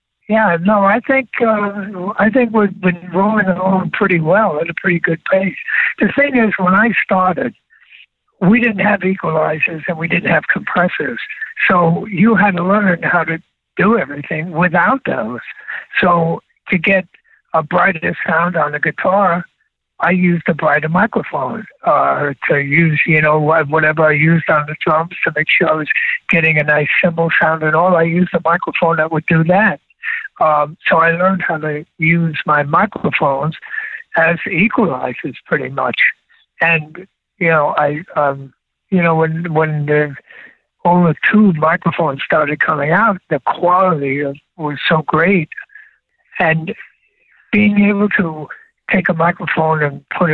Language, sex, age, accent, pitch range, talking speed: English, male, 60-79, American, 160-200 Hz, 160 wpm